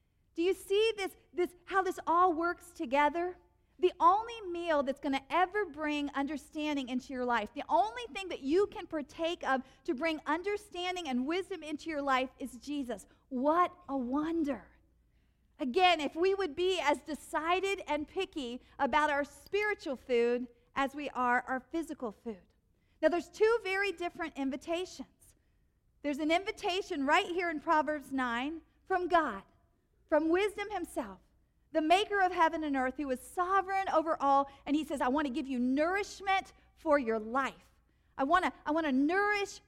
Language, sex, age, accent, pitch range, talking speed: English, female, 50-69, American, 265-355 Hz, 170 wpm